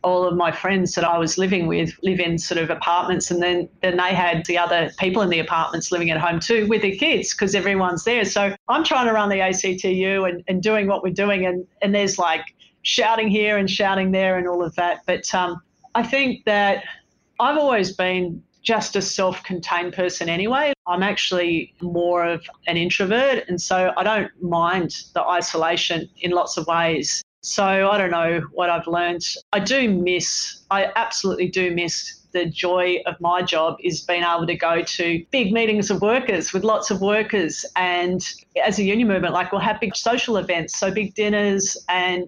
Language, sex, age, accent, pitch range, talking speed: English, female, 40-59, Australian, 175-205 Hz, 195 wpm